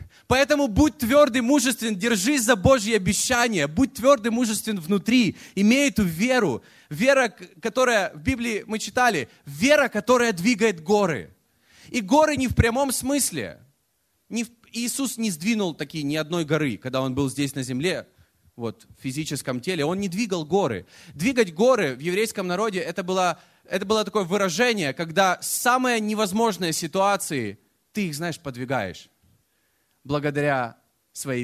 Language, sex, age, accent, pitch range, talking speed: Russian, male, 20-39, native, 150-230 Hz, 140 wpm